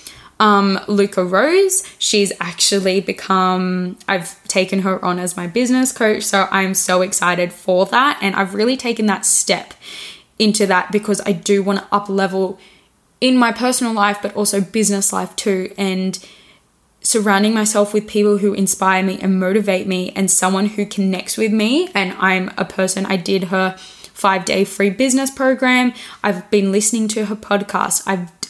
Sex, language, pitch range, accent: female, English, 190-210 Hz, Australian